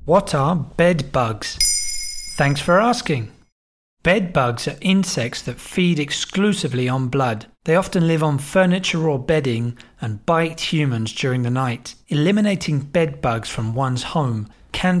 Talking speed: 145 wpm